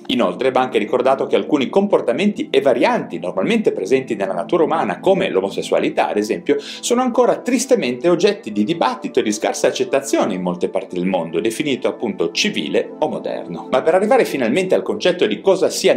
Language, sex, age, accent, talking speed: Italian, male, 40-59, native, 175 wpm